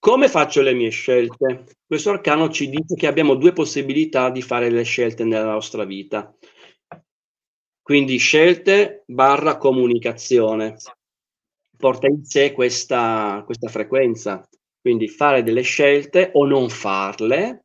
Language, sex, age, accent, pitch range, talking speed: Italian, male, 30-49, native, 115-165 Hz, 125 wpm